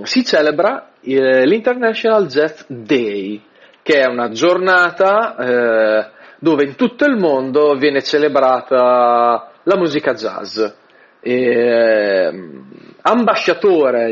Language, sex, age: Italian, male, 30-49